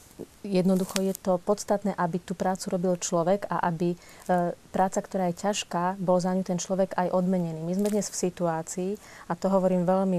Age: 30-49